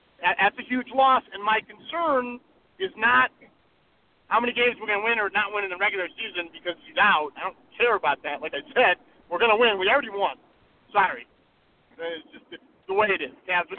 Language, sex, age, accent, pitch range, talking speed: English, male, 40-59, American, 195-295 Hz, 220 wpm